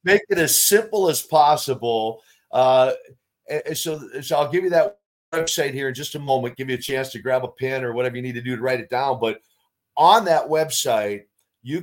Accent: American